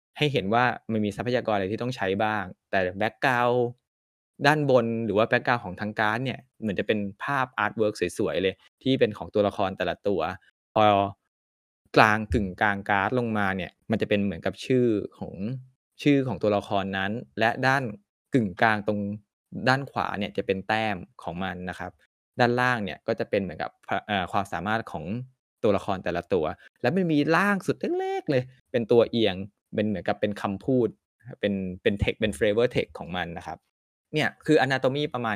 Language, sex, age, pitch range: Thai, male, 20-39, 100-125 Hz